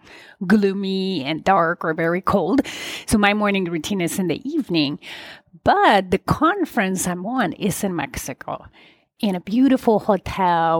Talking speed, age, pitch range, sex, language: 145 wpm, 30-49, 180-230 Hz, female, English